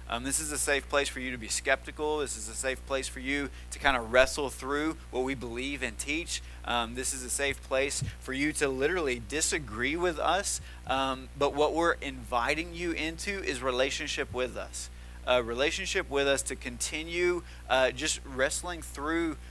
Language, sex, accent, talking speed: English, male, American, 190 wpm